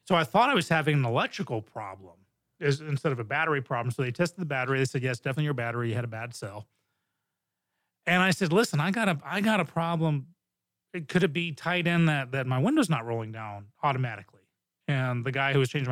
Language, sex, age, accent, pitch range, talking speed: English, male, 30-49, American, 125-165 Hz, 225 wpm